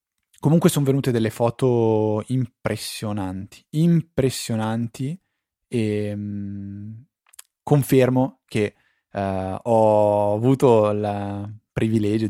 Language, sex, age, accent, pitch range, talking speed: Italian, male, 20-39, native, 105-125 Hz, 70 wpm